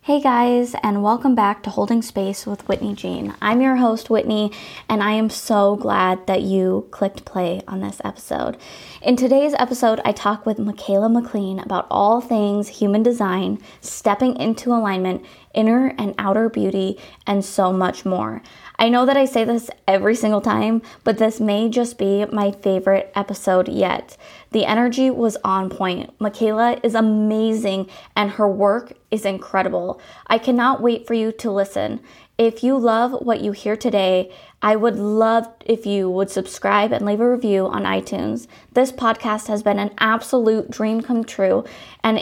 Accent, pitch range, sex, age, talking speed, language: American, 195-230 Hz, female, 20-39, 170 wpm, English